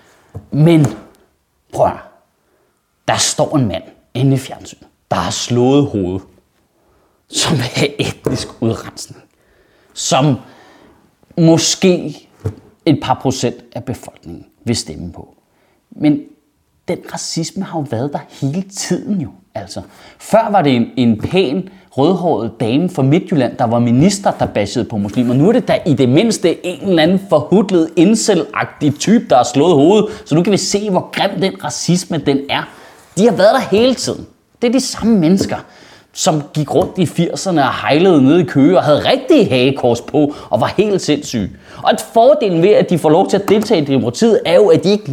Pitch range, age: 130-195 Hz, 30-49